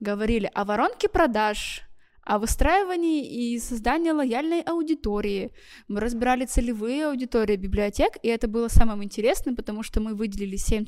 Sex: female